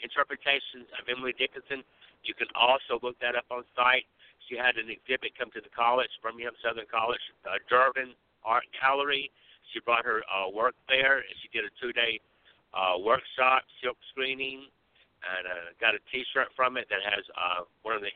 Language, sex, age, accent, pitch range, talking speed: English, male, 60-79, American, 125-140 Hz, 180 wpm